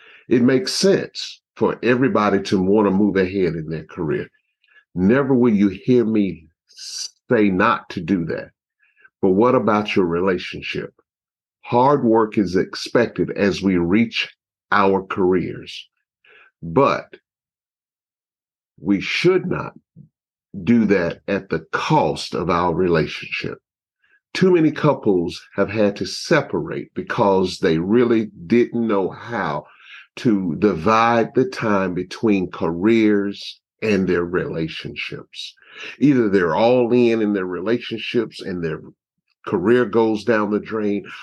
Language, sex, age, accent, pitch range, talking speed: English, male, 50-69, American, 95-120 Hz, 125 wpm